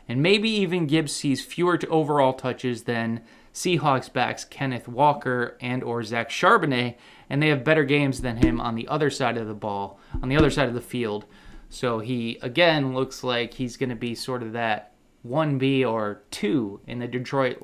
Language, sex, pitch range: English, male, 120-155 Hz